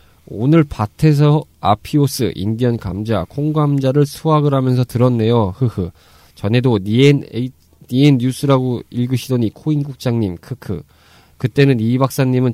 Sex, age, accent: male, 20-39, native